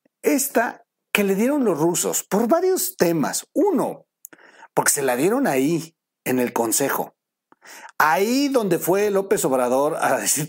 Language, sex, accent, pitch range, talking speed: Spanish, male, Mexican, 140-220 Hz, 145 wpm